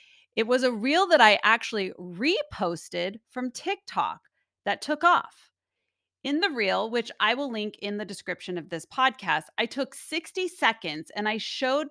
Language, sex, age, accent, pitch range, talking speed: English, female, 30-49, American, 190-265 Hz, 165 wpm